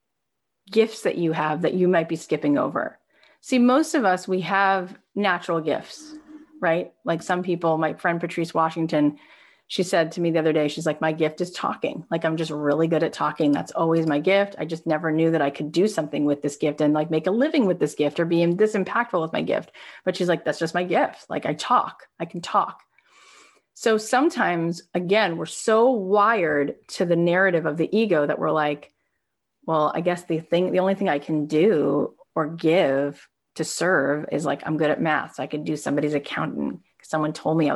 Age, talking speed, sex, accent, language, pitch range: 30-49, 220 wpm, female, American, English, 160-200 Hz